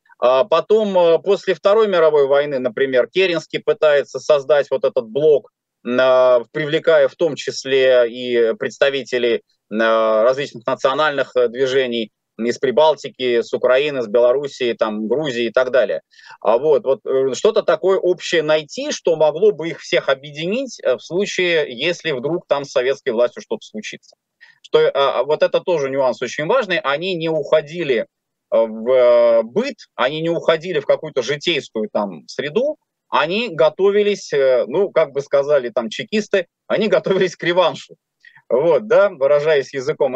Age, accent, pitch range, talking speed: 20-39, native, 135-205 Hz, 135 wpm